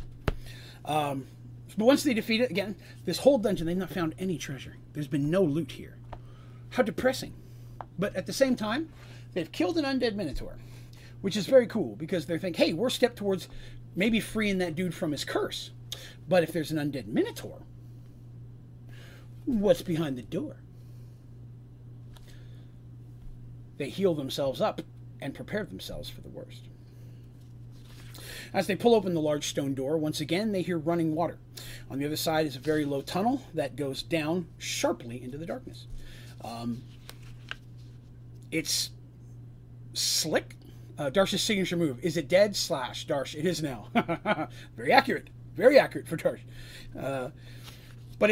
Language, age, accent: English, 40-59, American